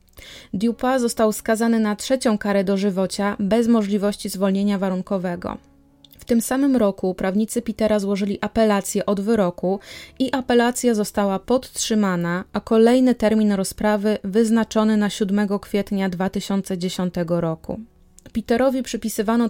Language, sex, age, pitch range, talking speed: Polish, female, 20-39, 200-225 Hz, 115 wpm